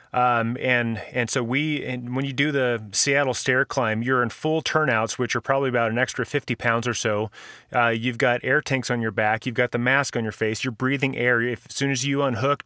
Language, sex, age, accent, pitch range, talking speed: English, male, 30-49, American, 120-140 Hz, 235 wpm